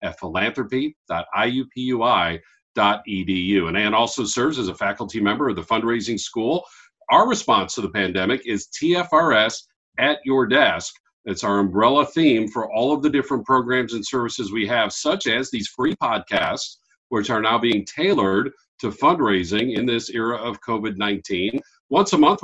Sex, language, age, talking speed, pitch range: male, English, 50-69, 155 wpm, 105-145 Hz